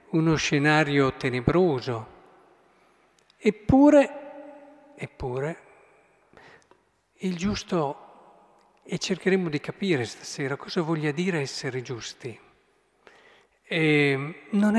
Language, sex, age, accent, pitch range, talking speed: Italian, male, 50-69, native, 135-190 Hz, 75 wpm